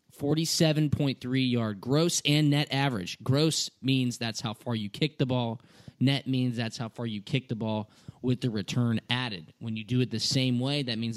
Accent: American